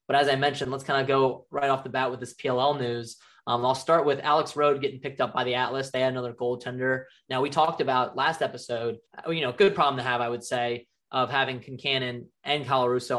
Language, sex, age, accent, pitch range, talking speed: English, male, 20-39, American, 120-135 Hz, 240 wpm